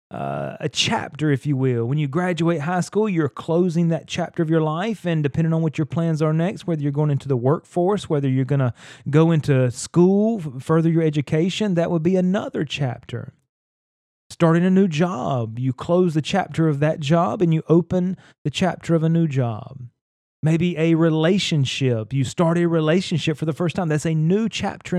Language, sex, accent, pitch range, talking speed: English, male, American, 135-170 Hz, 195 wpm